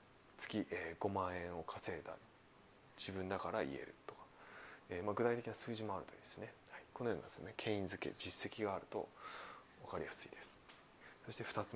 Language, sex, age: Japanese, male, 20-39